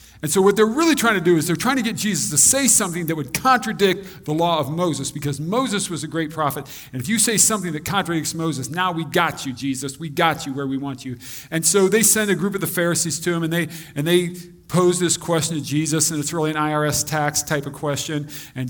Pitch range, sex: 150-185 Hz, male